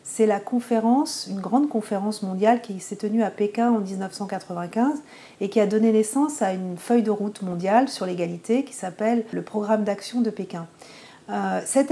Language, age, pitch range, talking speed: French, 40-59, 205-245 Hz, 180 wpm